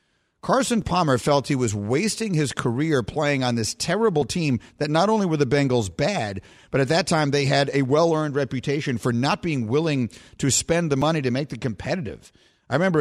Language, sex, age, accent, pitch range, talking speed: English, male, 50-69, American, 120-155 Hz, 200 wpm